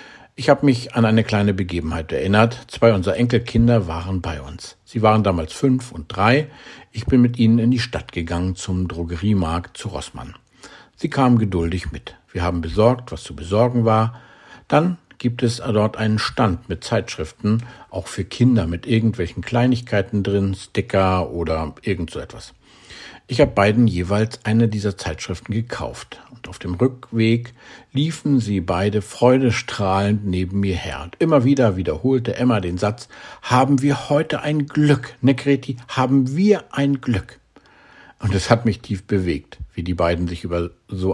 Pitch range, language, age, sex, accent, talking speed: 95-125 Hz, German, 50-69, male, German, 160 wpm